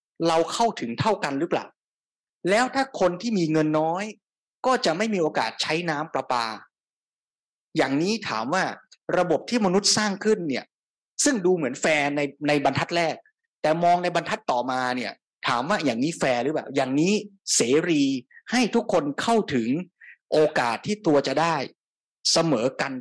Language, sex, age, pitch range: Thai, male, 20-39, 135-195 Hz